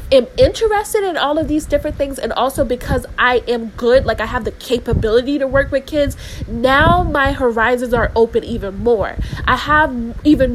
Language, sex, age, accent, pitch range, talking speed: English, female, 20-39, American, 235-285 Hz, 190 wpm